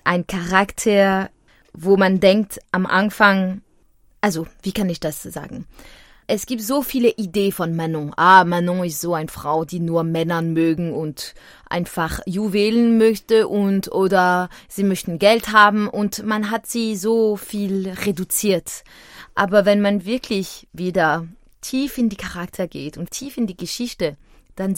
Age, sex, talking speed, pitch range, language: 20-39, female, 155 wpm, 175-215 Hz, German